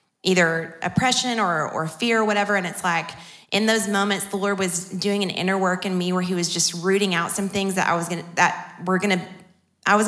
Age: 20-39